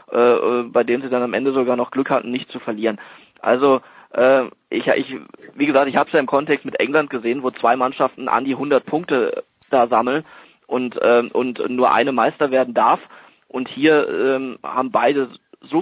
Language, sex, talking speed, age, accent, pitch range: German, male, 195 wpm, 20-39, German, 120-135 Hz